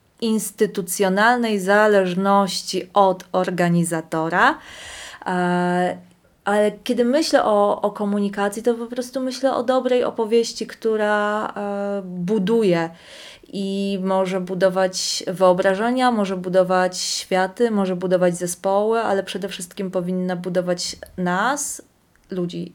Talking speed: 95 wpm